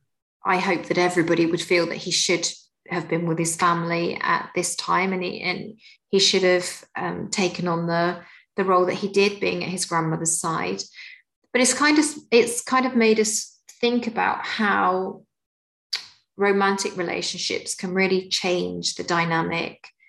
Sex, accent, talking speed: female, British, 165 wpm